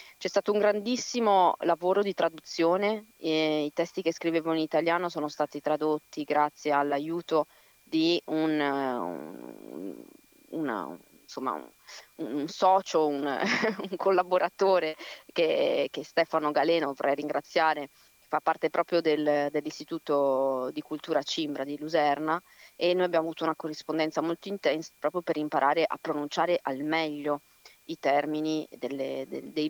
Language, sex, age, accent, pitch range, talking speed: Italian, female, 30-49, native, 150-175 Hz, 130 wpm